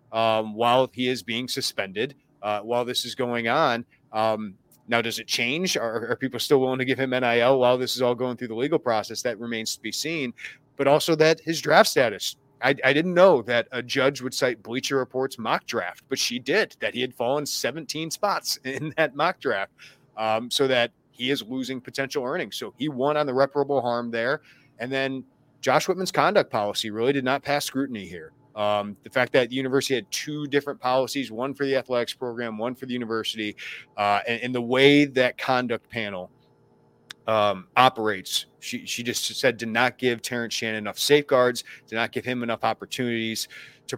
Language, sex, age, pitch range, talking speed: English, male, 30-49, 115-135 Hz, 200 wpm